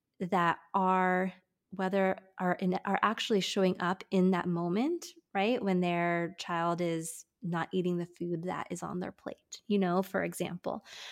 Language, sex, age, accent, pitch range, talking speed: English, female, 20-39, American, 175-200 Hz, 160 wpm